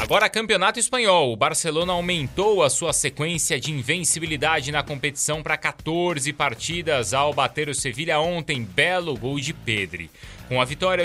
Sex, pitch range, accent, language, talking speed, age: male, 125-165 Hz, Brazilian, Portuguese, 150 wpm, 30-49